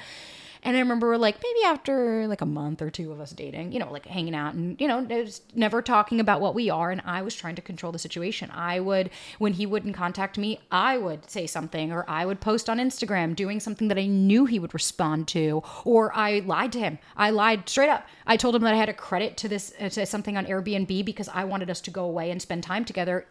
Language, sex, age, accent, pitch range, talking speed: English, female, 30-49, American, 175-220 Hz, 245 wpm